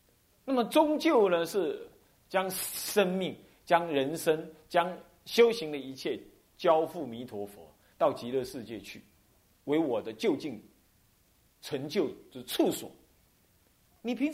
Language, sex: Chinese, male